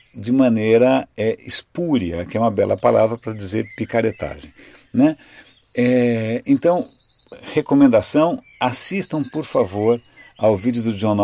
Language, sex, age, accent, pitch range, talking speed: Portuguese, male, 50-69, Brazilian, 105-130 Hz, 125 wpm